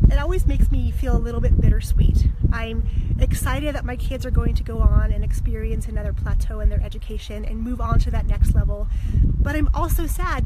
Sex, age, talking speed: female, 30-49, 210 wpm